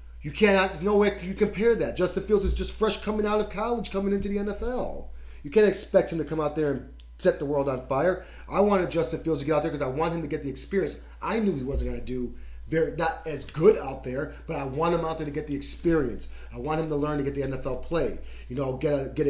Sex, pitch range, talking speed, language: male, 130-165 Hz, 285 wpm, English